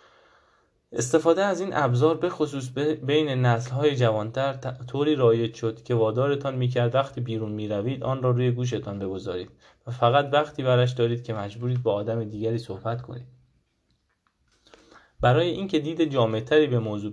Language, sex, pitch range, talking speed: Persian, male, 115-135 Hz, 140 wpm